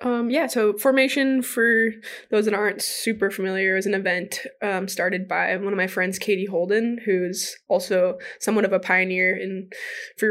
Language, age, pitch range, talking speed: English, 10-29, 195-235 Hz, 175 wpm